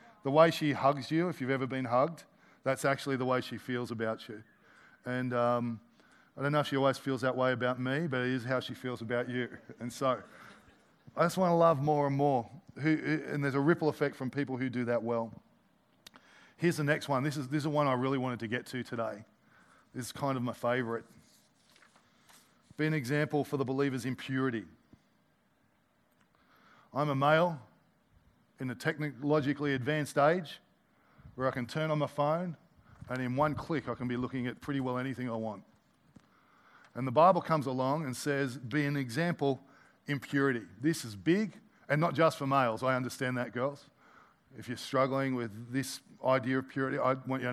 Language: English